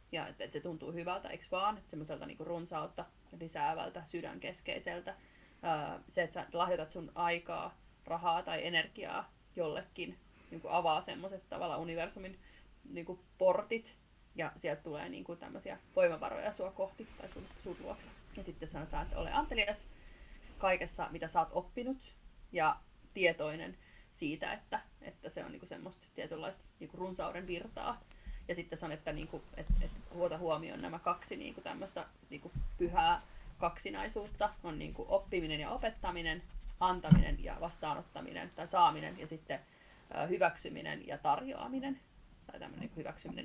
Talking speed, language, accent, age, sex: 140 wpm, Finnish, native, 30-49, female